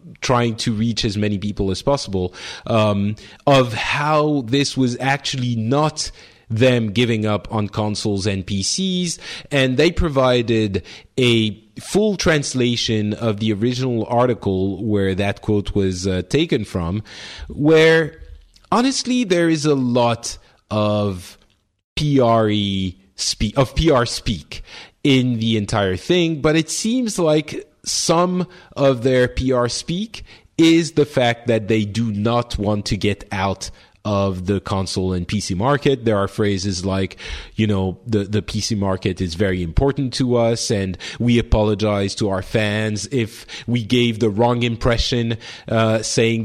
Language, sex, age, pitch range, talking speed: English, male, 30-49, 100-130 Hz, 140 wpm